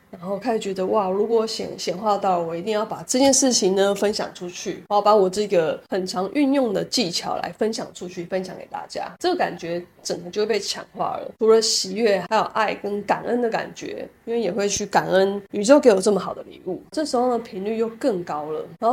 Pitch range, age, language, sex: 185-230 Hz, 20-39, Chinese, female